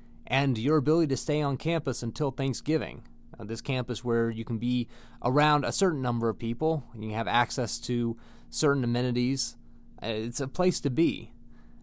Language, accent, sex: English, American, male